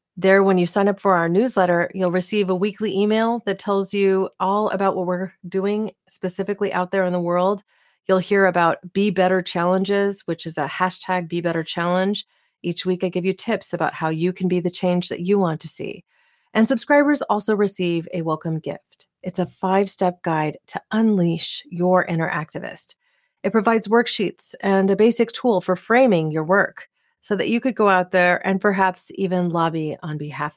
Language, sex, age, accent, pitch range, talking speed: English, female, 30-49, American, 175-205 Hz, 190 wpm